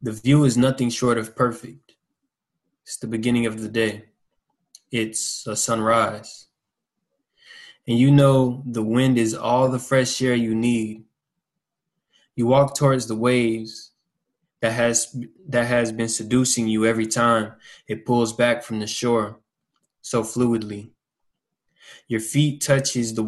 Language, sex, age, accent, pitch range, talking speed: English, male, 20-39, American, 110-125 Hz, 140 wpm